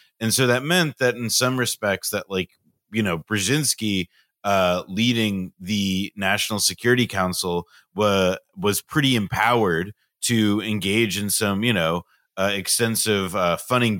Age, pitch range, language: 30-49, 95-120 Hz, English